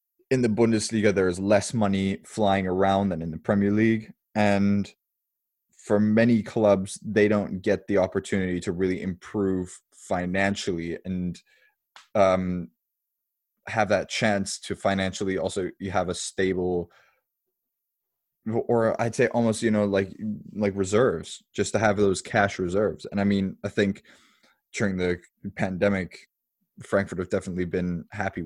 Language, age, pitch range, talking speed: English, 20-39, 95-105 Hz, 140 wpm